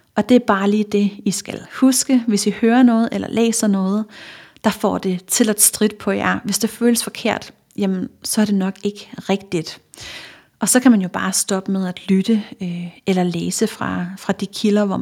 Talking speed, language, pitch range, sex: 210 wpm, Danish, 195-225 Hz, female